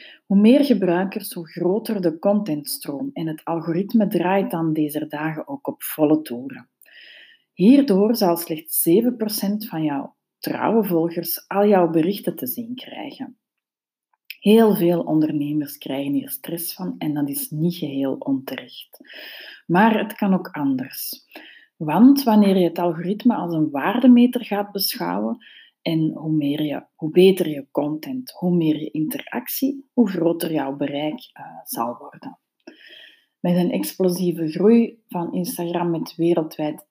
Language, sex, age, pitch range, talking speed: Dutch, female, 30-49, 160-240 Hz, 140 wpm